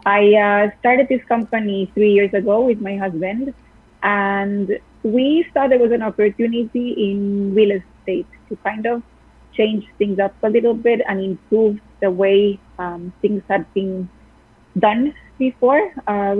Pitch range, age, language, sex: 200-230 Hz, 30-49, English, female